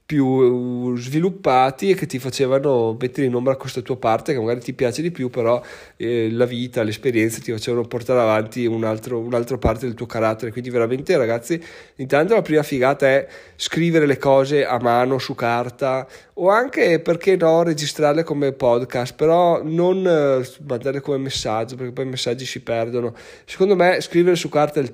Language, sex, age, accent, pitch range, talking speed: Italian, male, 20-39, native, 125-155 Hz, 180 wpm